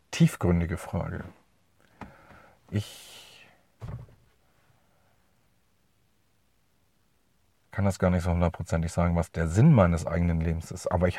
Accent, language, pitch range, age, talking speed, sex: German, German, 90-110 Hz, 40-59, 100 wpm, male